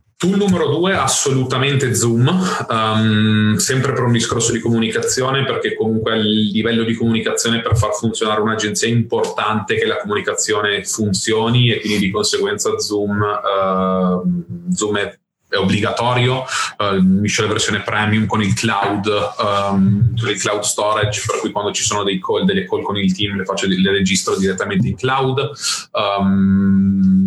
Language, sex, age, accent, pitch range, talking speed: Italian, male, 30-49, native, 105-125 Hz, 160 wpm